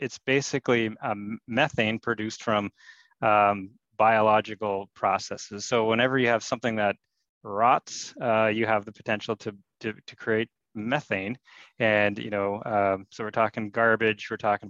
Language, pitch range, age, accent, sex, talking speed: English, 105-115 Hz, 20-39, American, male, 145 wpm